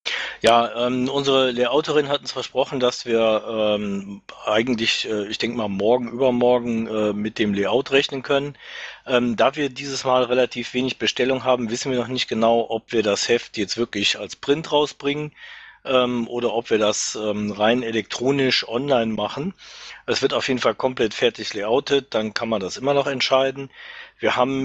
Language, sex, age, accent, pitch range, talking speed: German, male, 40-59, German, 110-135 Hz, 180 wpm